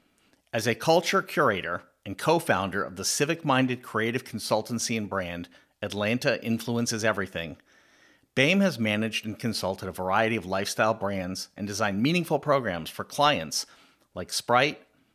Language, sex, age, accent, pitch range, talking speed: English, male, 40-59, American, 100-130 Hz, 145 wpm